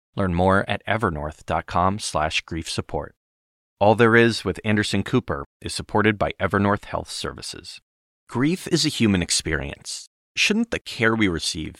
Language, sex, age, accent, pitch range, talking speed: English, male, 30-49, American, 85-115 Hz, 145 wpm